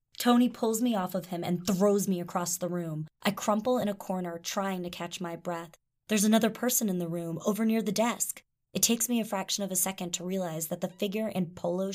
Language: English